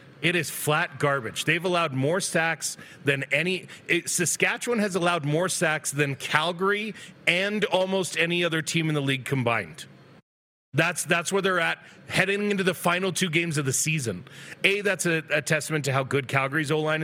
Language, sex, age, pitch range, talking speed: English, male, 30-49, 140-175 Hz, 175 wpm